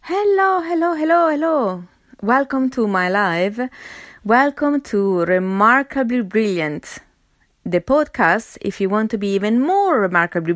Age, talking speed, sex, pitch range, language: 20-39, 125 wpm, female, 195-250 Hz, English